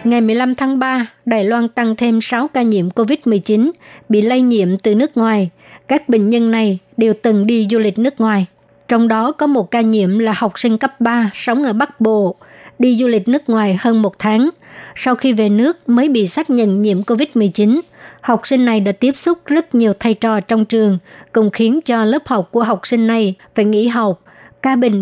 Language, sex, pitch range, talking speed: Vietnamese, male, 215-245 Hz, 210 wpm